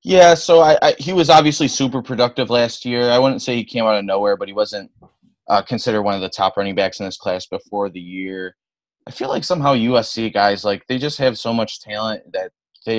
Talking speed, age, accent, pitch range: 235 wpm, 20-39, American, 100-120 Hz